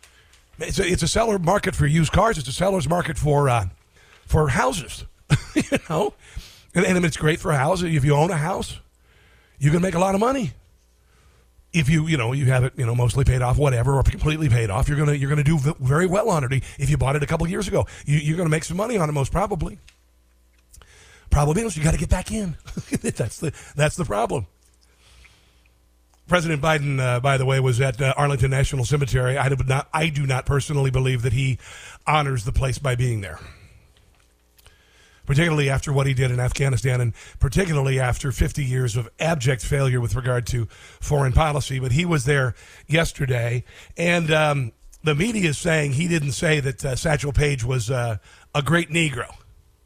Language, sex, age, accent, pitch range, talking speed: English, male, 50-69, American, 120-155 Hz, 195 wpm